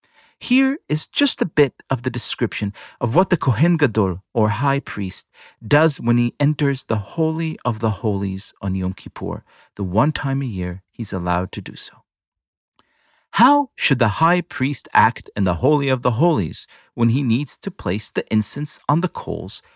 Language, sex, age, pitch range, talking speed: English, male, 40-59, 105-160 Hz, 180 wpm